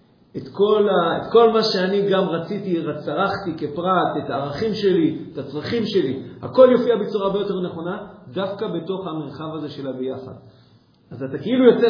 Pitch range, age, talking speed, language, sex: 140-195 Hz, 50-69, 165 wpm, Hebrew, male